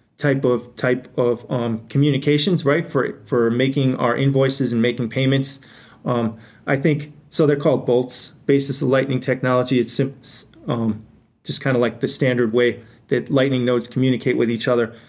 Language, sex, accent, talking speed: English, male, American, 165 wpm